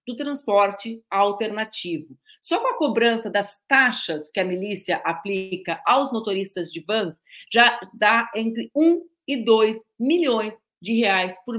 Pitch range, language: 195-265 Hz, Portuguese